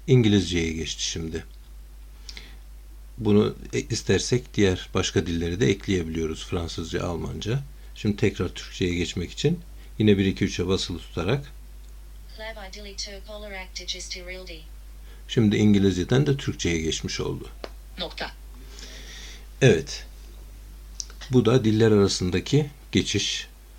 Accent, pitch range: native, 85-115 Hz